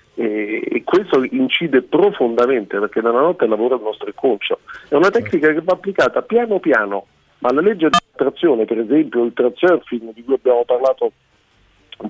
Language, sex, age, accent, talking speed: Italian, male, 40-59, native, 175 wpm